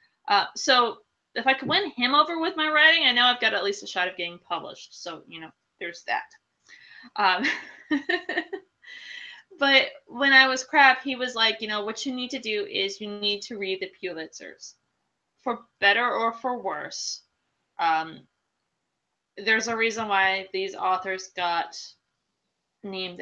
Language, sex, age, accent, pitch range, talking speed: English, female, 20-39, American, 185-250 Hz, 165 wpm